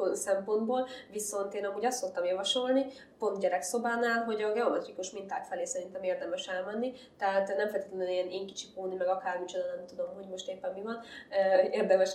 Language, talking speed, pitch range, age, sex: Hungarian, 160 wpm, 180-210 Hz, 20-39, female